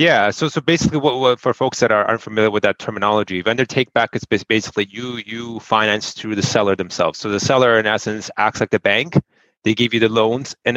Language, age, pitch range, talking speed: English, 30-49, 100-125 Hz, 230 wpm